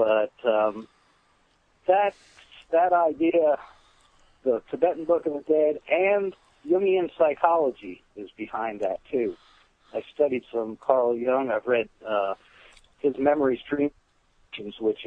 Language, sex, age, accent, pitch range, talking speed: English, male, 50-69, American, 120-165 Hz, 120 wpm